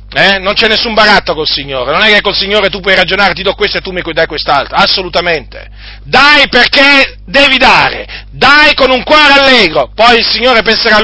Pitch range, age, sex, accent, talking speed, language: 165-235 Hz, 40-59, male, native, 205 wpm, Italian